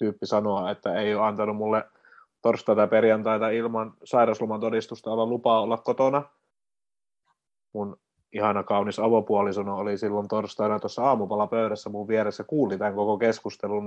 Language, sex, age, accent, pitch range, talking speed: Finnish, male, 30-49, native, 100-120 Hz, 135 wpm